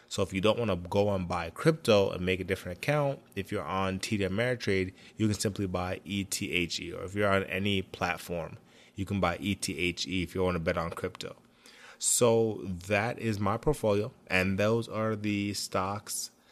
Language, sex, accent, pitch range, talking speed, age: English, male, American, 90-105 Hz, 190 wpm, 20-39